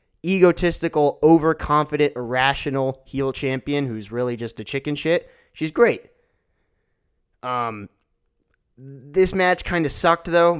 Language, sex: English, male